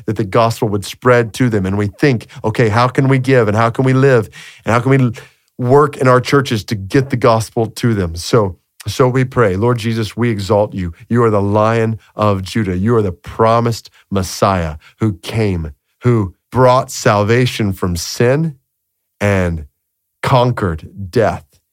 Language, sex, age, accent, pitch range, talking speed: English, male, 40-59, American, 100-125 Hz, 175 wpm